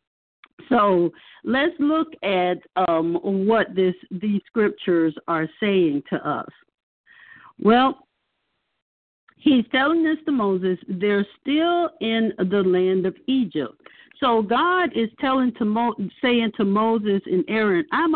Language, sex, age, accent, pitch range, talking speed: English, female, 50-69, American, 195-285 Hz, 125 wpm